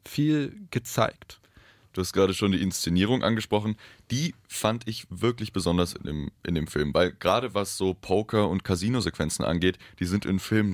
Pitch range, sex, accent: 90-110 Hz, male, German